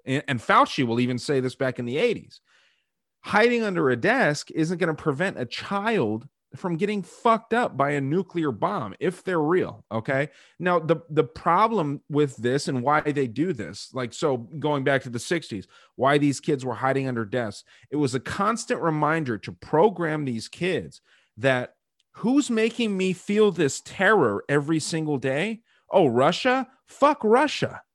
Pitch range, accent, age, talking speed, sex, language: 135-195 Hz, American, 30-49, 170 wpm, male, English